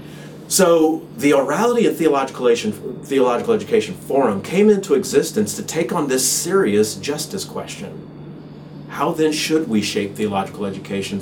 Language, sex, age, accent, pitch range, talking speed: English, male, 40-59, American, 120-195 Hz, 135 wpm